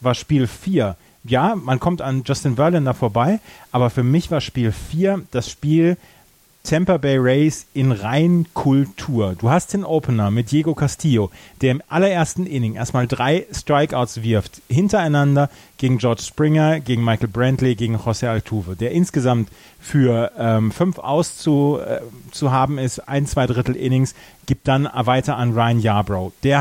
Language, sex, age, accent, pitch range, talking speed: German, male, 30-49, German, 120-150 Hz, 160 wpm